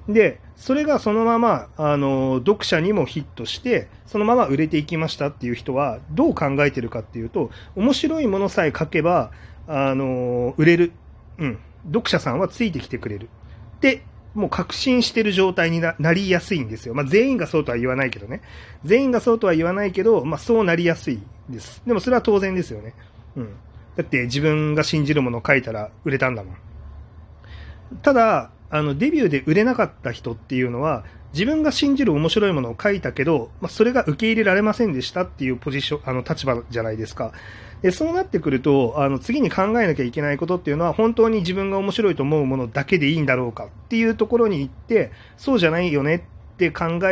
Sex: male